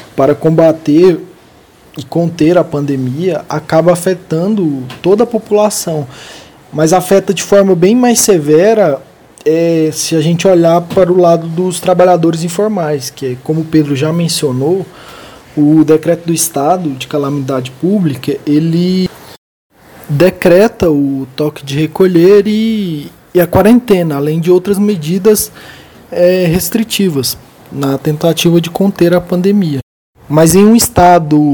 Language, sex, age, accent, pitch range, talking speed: Portuguese, male, 20-39, Brazilian, 150-195 Hz, 125 wpm